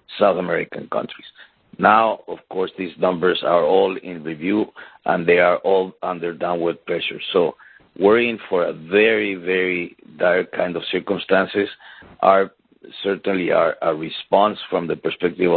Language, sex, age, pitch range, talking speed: English, male, 50-69, 85-100 Hz, 145 wpm